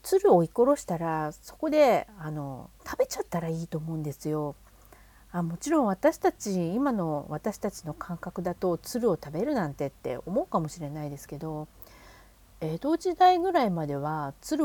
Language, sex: Japanese, female